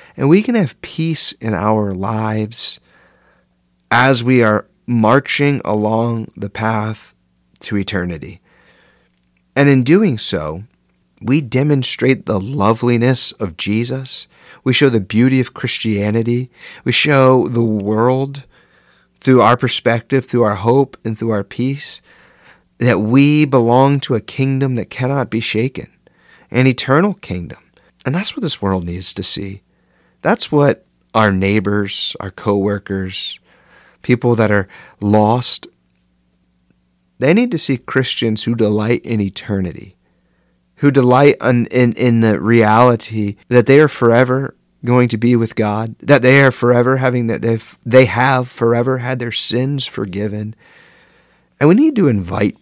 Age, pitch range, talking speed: 40-59, 105-130 Hz, 140 wpm